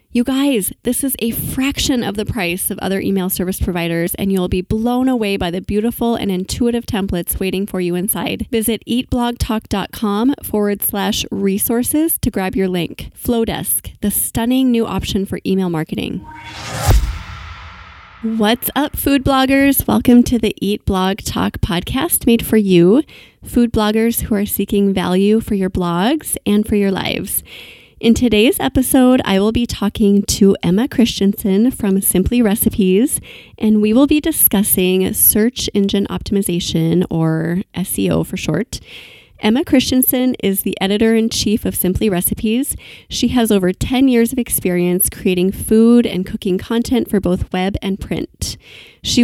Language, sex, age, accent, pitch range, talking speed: English, female, 20-39, American, 190-235 Hz, 155 wpm